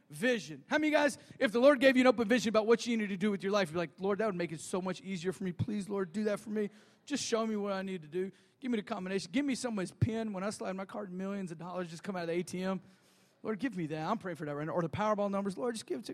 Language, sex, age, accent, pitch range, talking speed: English, male, 30-49, American, 185-255 Hz, 335 wpm